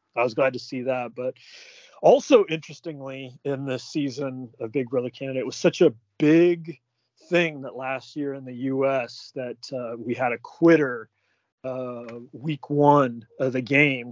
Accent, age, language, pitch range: American, 30-49, English, 125-155 Hz